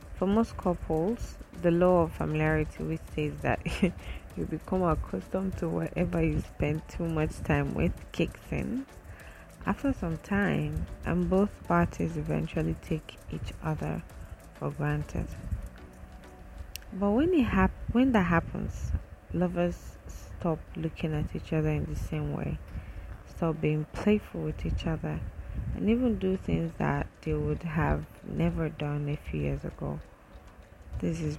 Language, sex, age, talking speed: English, female, 20-39, 140 wpm